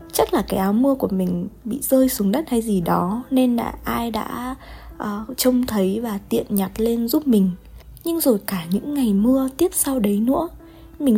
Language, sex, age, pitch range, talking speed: Vietnamese, female, 20-39, 195-250 Hz, 205 wpm